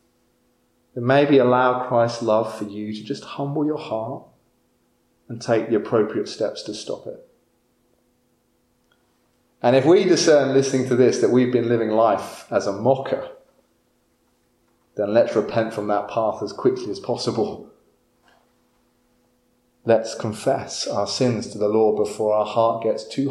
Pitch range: 100-125 Hz